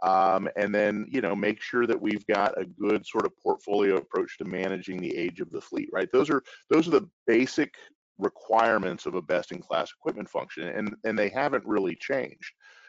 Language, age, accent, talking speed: English, 40-59, American, 200 wpm